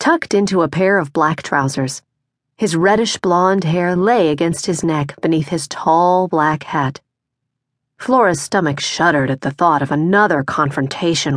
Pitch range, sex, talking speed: 135-185 Hz, female, 150 wpm